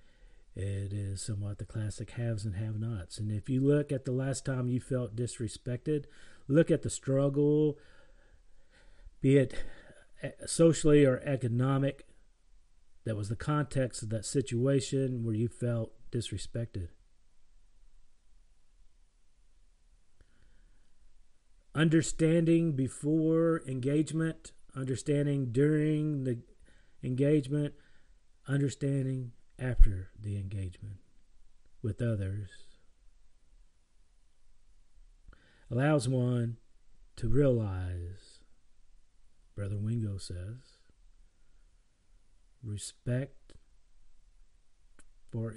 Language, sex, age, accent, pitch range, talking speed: English, male, 40-59, American, 90-135 Hz, 80 wpm